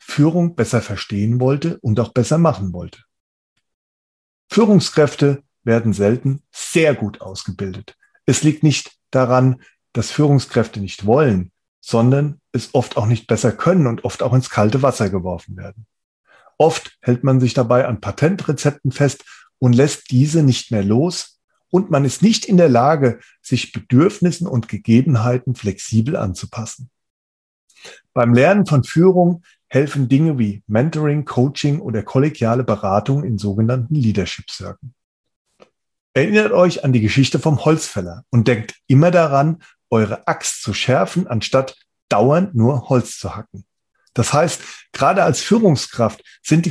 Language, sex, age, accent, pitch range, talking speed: German, male, 40-59, German, 110-150 Hz, 135 wpm